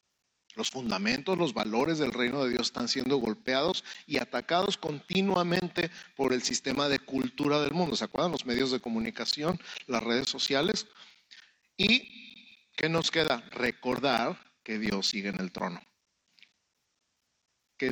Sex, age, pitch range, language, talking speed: male, 50-69, 125-175 Hz, Spanish, 140 wpm